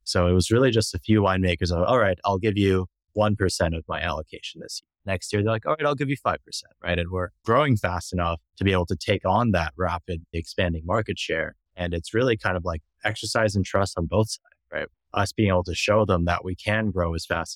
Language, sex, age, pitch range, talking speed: English, male, 20-39, 85-105 Hz, 245 wpm